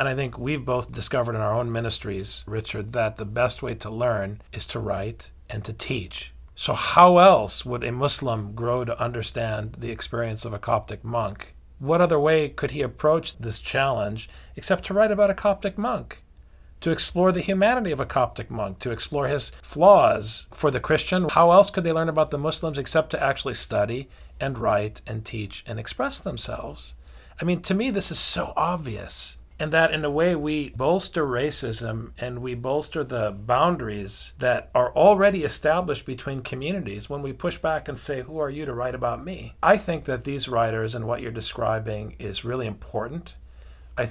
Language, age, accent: English, 40-59, American